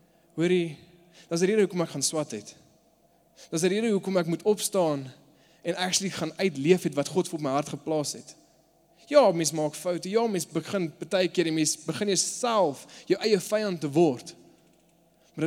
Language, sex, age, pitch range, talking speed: English, male, 20-39, 140-170 Hz, 180 wpm